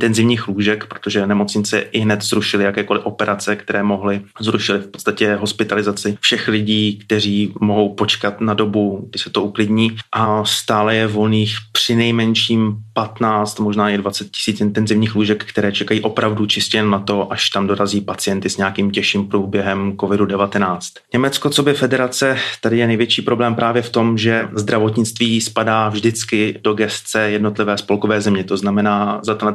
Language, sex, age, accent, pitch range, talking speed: Czech, male, 30-49, native, 105-115 Hz, 160 wpm